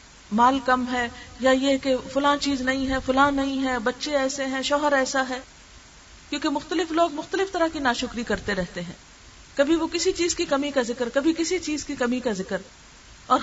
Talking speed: 200 wpm